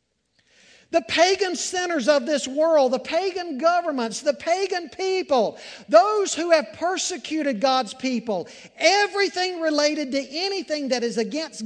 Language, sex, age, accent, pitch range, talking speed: English, male, 50-69, American, 205-315 Hz, 130 wpm